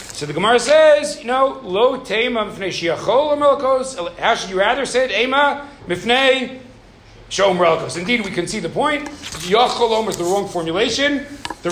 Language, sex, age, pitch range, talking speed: English, male, 40-59, 175-245 Hz, 135 wpm